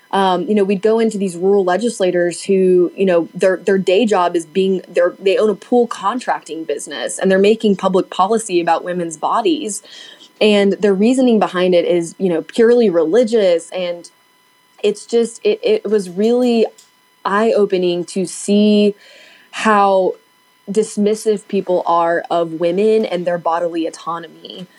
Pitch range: 175-205 Hz